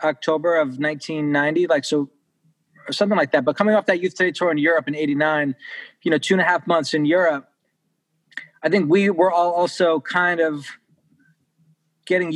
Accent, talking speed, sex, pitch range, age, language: American, 185 wpm, male, 140-170 Hz, 20-39, English